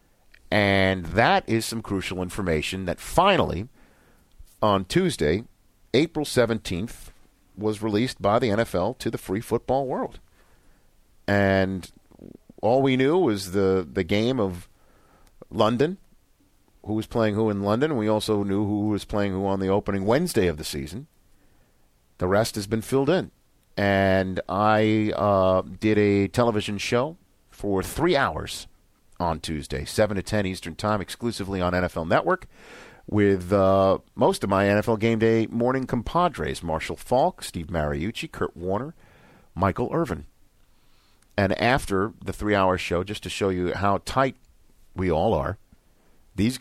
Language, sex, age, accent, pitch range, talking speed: English, male, 50-69, American, 90-110 Hz, 145 wpm